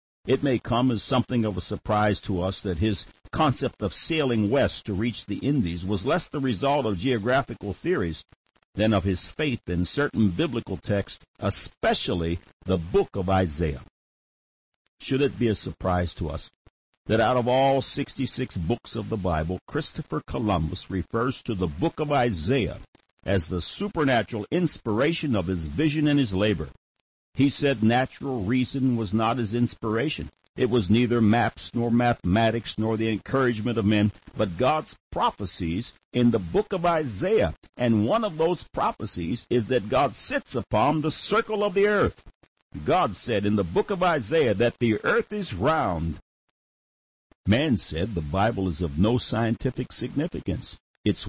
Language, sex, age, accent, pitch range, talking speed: English, male, 60-79, American, 95-130 Hz, 160 wpm